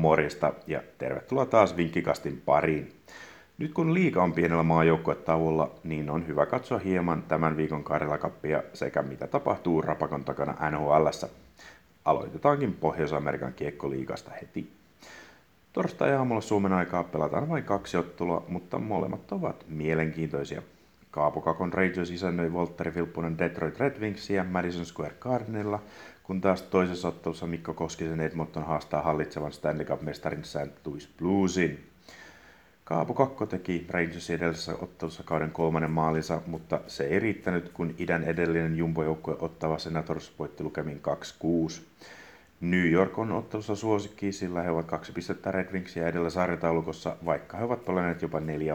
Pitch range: 80-90 Hz